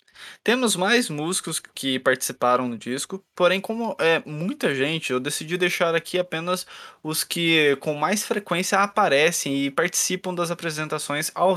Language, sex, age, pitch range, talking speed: Portuguese, male, 20-39, 140-195 Hz, 145 wpm